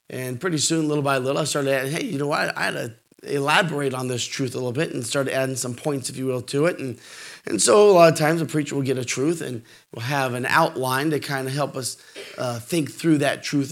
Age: 30-49